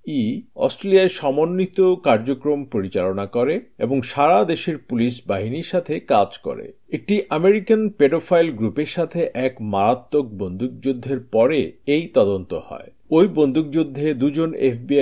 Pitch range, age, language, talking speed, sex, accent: 120-170 Hz, 50-69, Bengali, 120 wpm, male, native